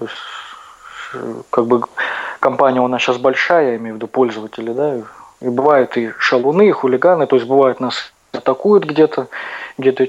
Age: 20-39